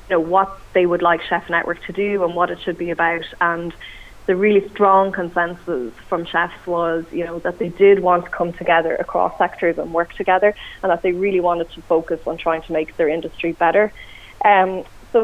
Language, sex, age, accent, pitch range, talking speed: English, female, 20-39, Irish, 170-195 Hz, 215 wpm